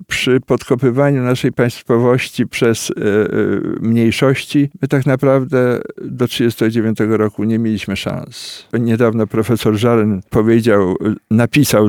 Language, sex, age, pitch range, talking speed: Polish, male, 50-69, 115-155 Hz, 110 wpm